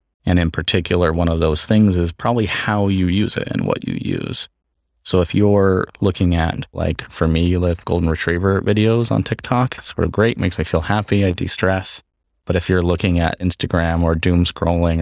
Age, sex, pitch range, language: 20-39, male, 80-95 Hz, English